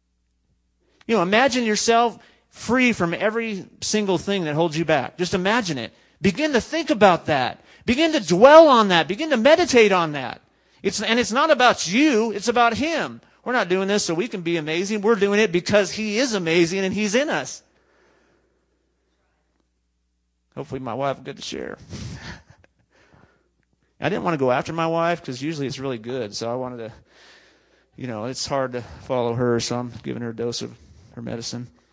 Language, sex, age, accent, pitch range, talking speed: English, male, 40-59, American, 120-200 Hz, 185 wpm